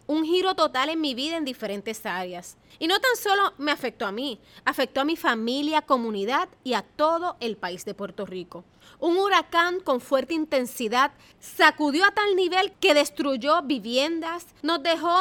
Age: 30-49